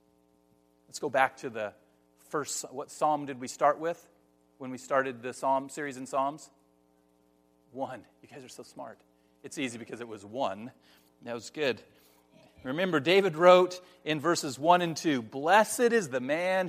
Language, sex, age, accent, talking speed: English, male, 40-59, American, 170 wpm